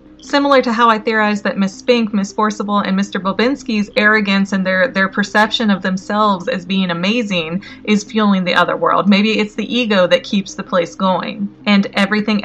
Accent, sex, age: American, female, 30-49